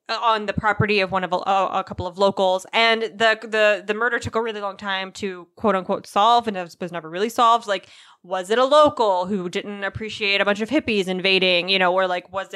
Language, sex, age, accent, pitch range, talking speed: English, female, 20-39, American, 190-235 Hz, 235 wpm